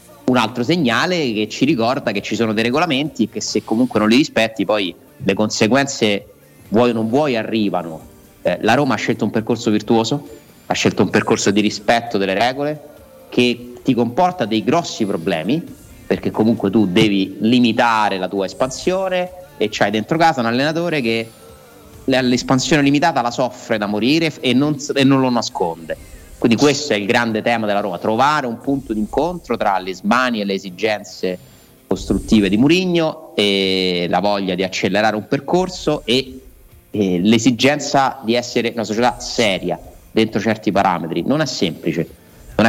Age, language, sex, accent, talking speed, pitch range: 30-49, Italian, male, native, 165 wpm, 105-130 Hz